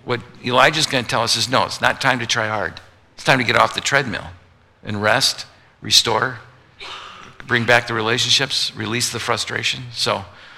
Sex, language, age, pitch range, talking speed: male, English, 50-69, 110-145 Hz, 180 wpm